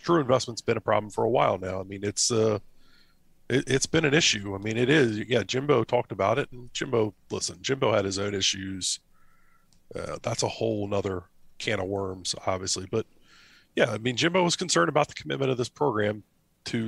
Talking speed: 210 wpm